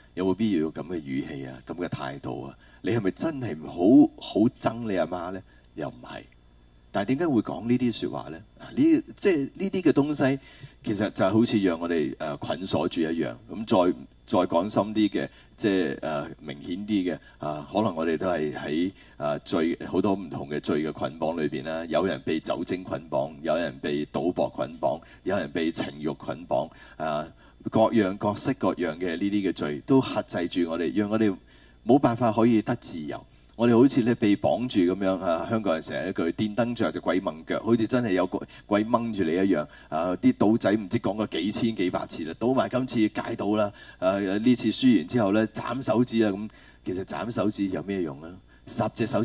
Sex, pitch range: male, 85-120 Hz